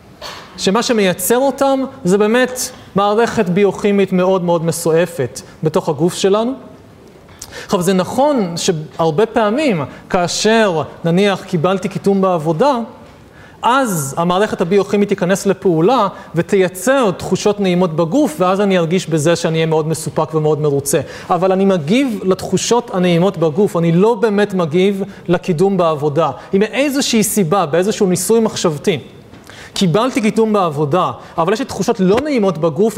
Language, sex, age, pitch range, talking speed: Hebrew, male, 30-49, 170-220 Hz, 125 wpm